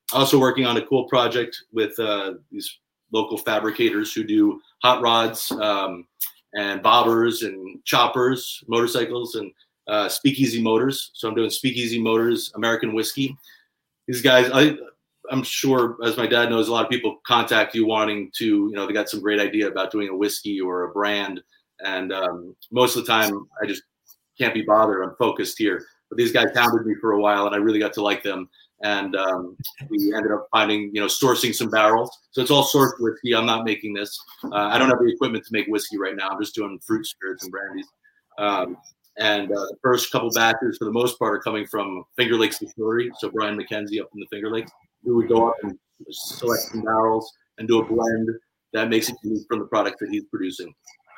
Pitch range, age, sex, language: 105-130 Hz, 30-49, male, English